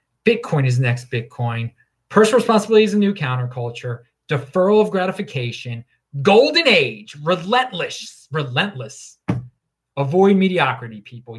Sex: male